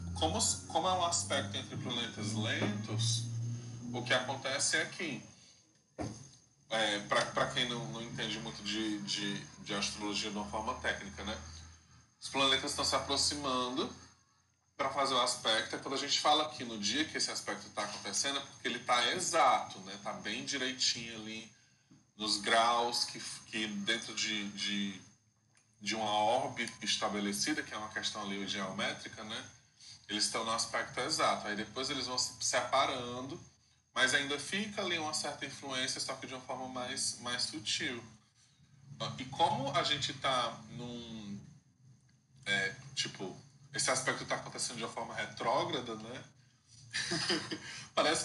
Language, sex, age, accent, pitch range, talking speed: Portuguese, male, 20-39, Brazilian, 110-135 Hz, 150 wpm